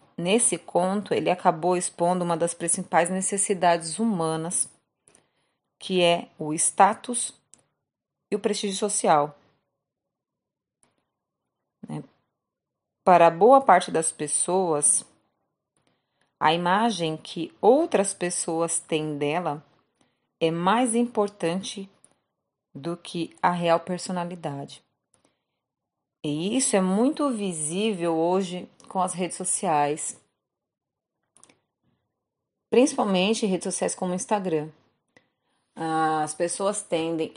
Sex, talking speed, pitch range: female, 90 wpm, 160-195 Hz